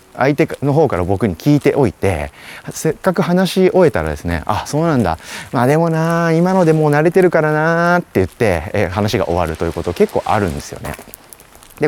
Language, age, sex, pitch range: Japanese, 30-49, male, 90-150 Hz